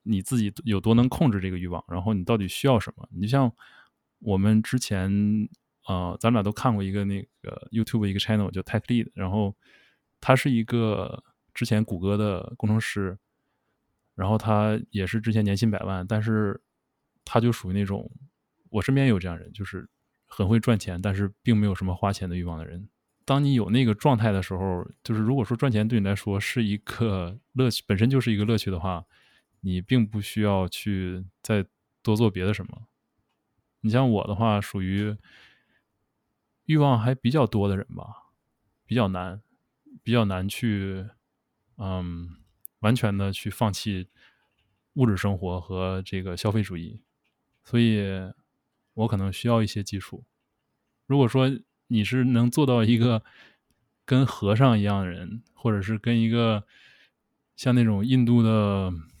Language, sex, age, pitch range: English, male, 20-39, 95-115 Hz